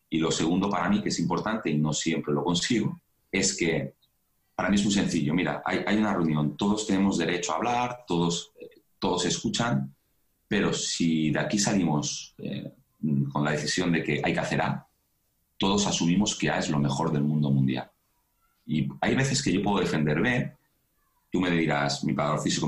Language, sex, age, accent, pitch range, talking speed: Spanish, male, 40-59, Spanish, 70-95 Hz, 190 wpm